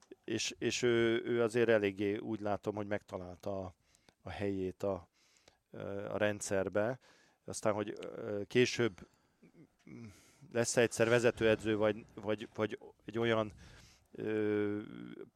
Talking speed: 110 wpm